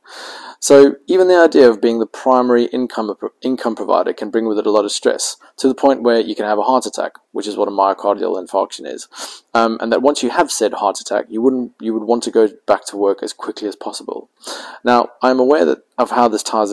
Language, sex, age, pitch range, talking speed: English, male, 20-39, 105-130 Hz, 245 wpm